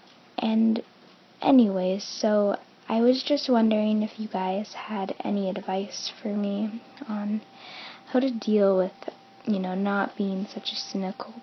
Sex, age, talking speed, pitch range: female, 10-29, 140 wpm, 200-240 Hz